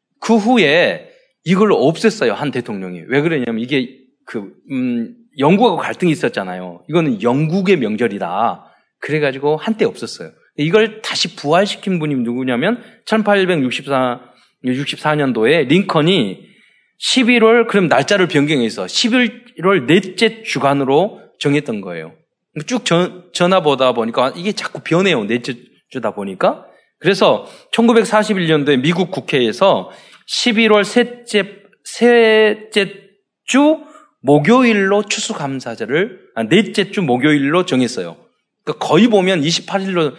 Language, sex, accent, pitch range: Korean, male, native, 145-220 Hz